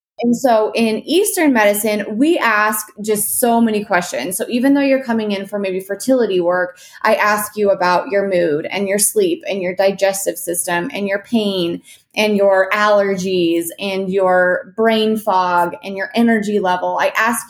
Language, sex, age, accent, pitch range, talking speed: English, female, 20-39, American, 195-235 Hz, 170 wpm